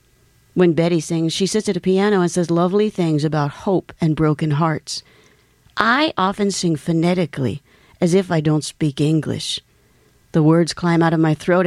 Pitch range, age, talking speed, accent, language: 150-185 Hz, 50-69, 175 wpm, American, English